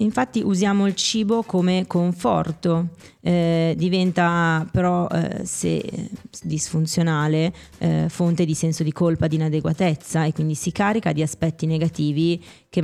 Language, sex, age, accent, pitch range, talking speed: Italian, female, 20-39, native, 155-175 Hz, 130 wpm